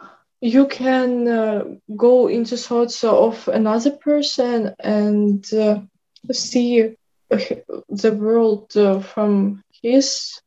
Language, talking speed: English, 95 wpm